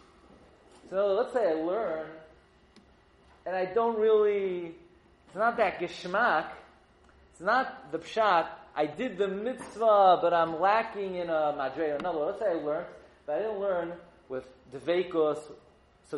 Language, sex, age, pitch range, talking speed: English, male, 40-59, 195-275 Hz, 150 wpm